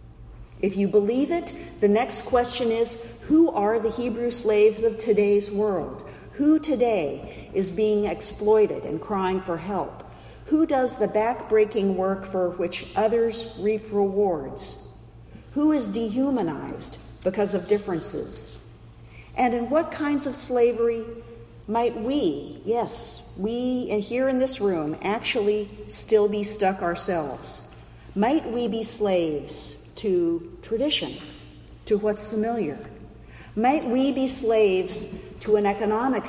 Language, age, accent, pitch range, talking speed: English, 50-69, American, 190-230 Hz, 125 wpm